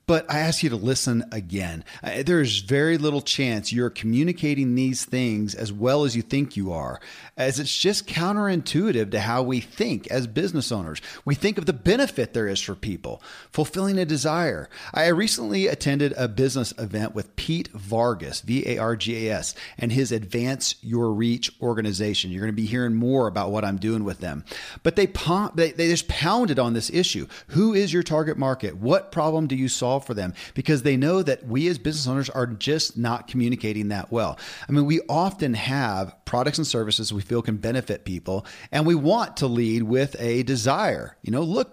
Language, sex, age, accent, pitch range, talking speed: English, male, 40-59, American, 110-155 Hz, 190 wpm